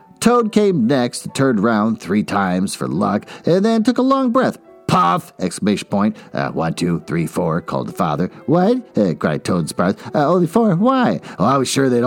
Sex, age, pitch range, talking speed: male, 50-69, 125-200 Hz, 210 wpm